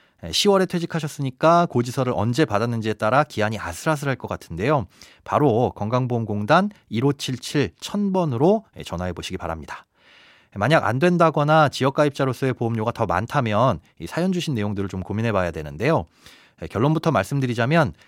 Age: 30-49